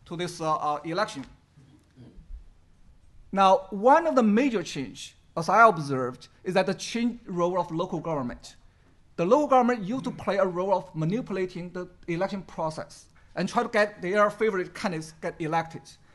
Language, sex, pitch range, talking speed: English, male, 170-220 Hz, 165 wpm